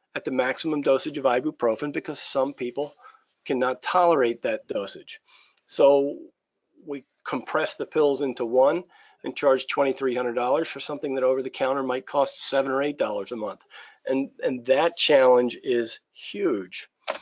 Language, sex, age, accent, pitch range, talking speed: English, male, 40-59, American, 130-175 Hz, 140 wpm